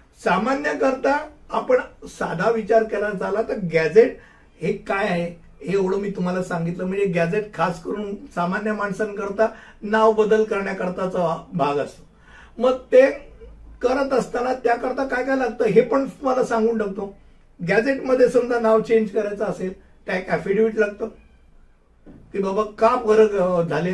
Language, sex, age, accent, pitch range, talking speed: Hindi, male, 60-79, native, 185-240 Hz, 60 wpm